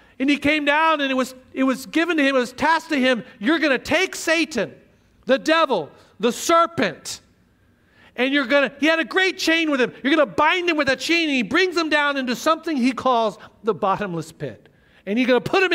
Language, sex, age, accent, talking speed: English, male, 50-69, American, 240 wpm